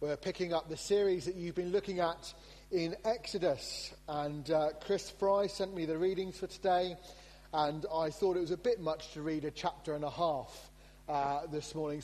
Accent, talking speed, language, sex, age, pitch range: British, 200 wpm, English, male, 40-59, 140-195 Hz